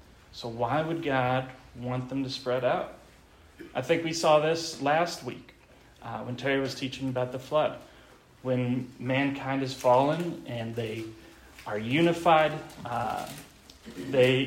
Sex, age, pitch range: male, 30-49, 125-145 Hz